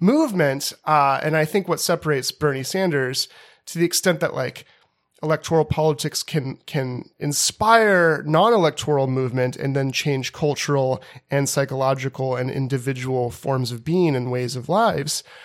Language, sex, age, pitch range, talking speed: English, male, 30-49, 135-175 Hz, 140 wpm